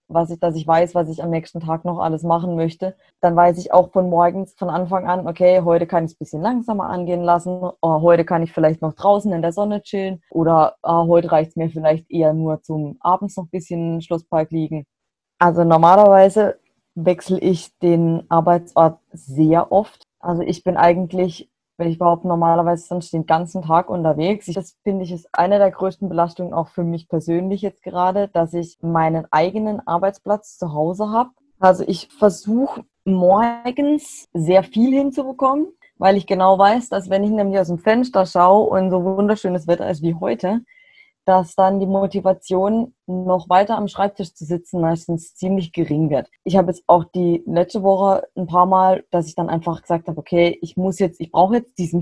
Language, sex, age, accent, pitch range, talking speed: German, female, 20-39, German, 170-195 Hz, 195 wpm